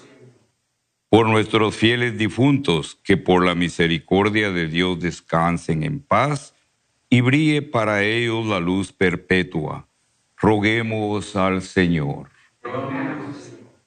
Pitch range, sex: 100-130 Hz, male